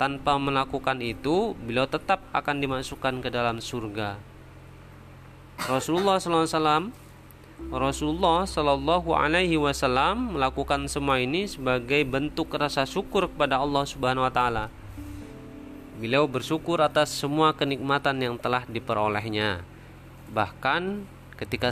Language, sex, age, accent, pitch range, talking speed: Indonesian, male, 30-49, native, 110-145 Hz, 100 wpm